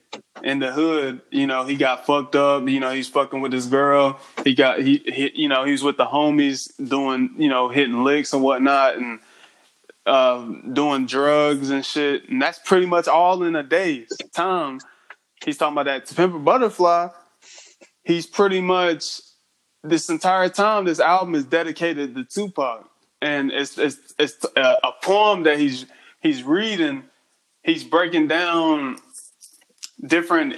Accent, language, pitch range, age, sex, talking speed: American, English, 140-180 Hz, 20-39, male, 160 wpm